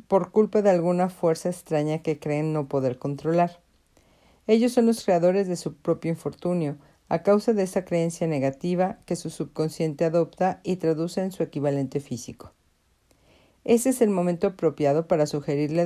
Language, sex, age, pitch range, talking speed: Spanish, female, 50-69, 145-185 Hz, 160 wpm